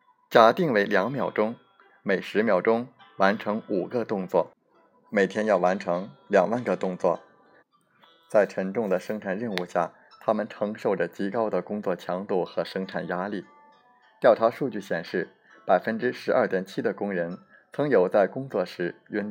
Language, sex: Chinese, male